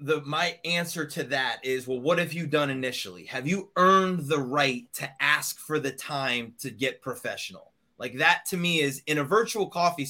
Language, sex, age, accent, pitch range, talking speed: English, male, 30-49, American, 150-195 Hz, 195 wpm